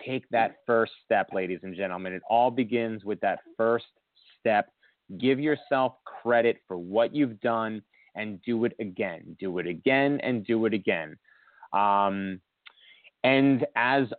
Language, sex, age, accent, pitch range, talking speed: English, male, 30-49, American, 110-135 Hz, 150 wpm